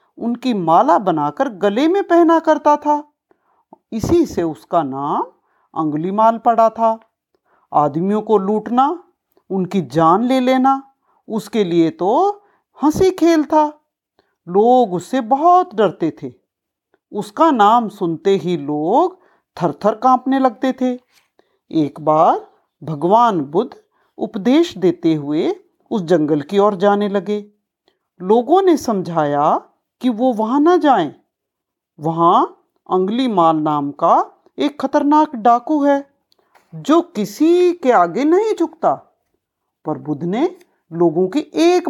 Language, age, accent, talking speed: Hindi, 50-69, native, 120 wpm